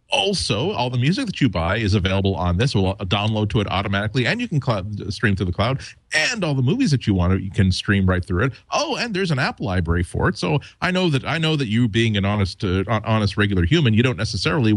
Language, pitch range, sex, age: English, 95-120 Hz, male, 40-59